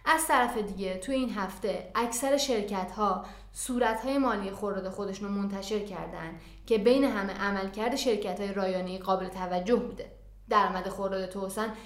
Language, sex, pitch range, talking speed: Persian, female, 190-225 Hz, 155 wpm